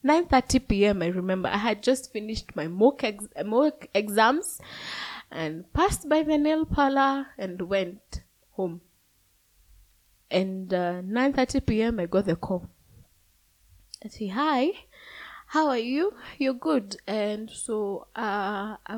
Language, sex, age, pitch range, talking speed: English, female, 20-39, 190-245 Hz, 130 wpm